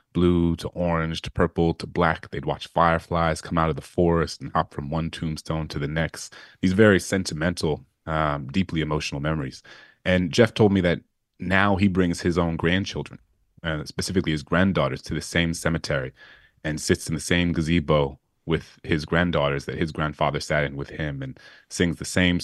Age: 30-49